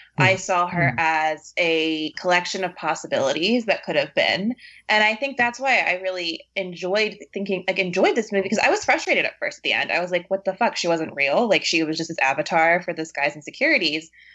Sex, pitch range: female, 165-220 Hz